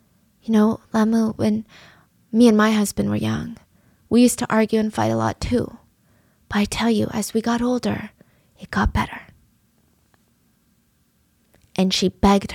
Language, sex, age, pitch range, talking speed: English, female, 20-39, 205-245 Hz, 160 wpm